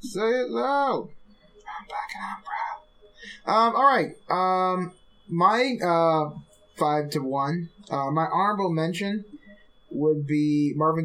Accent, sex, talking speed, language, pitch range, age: American, male, 120 wpm, English, 125-175 Hz, 20-39